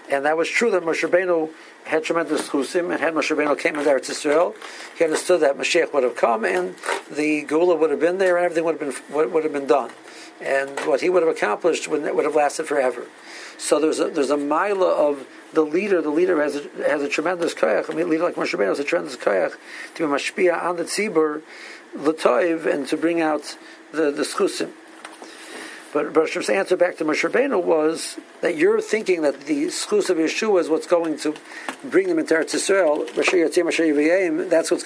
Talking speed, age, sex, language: 205 wpm, 60-79, male, English